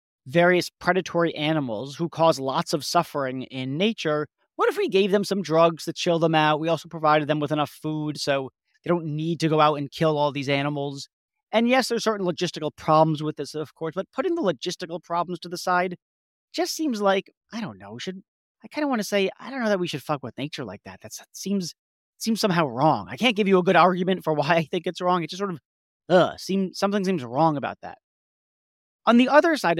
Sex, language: male, English